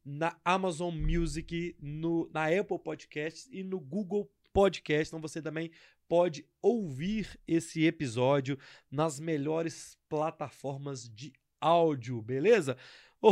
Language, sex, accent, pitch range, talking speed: Portuguese, male, Brazilian, 145-180 Hz, 115 wpm